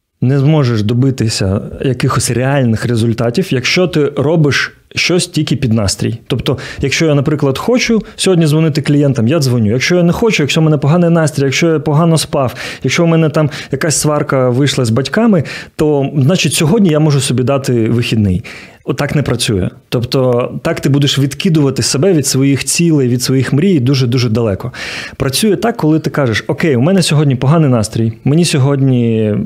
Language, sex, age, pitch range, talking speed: Ukrainian, male, 30-49, 125-155 Hz, 170 wpm